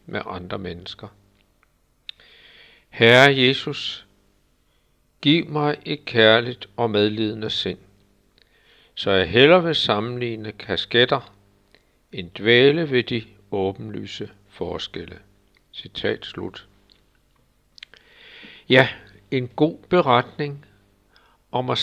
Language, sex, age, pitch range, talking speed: Danish, male, 60-79, 100-130 Hz, 90 wpm